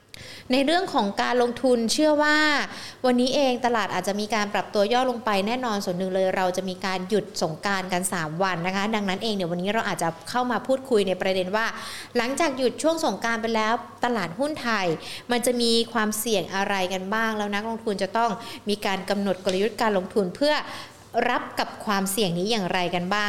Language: Thai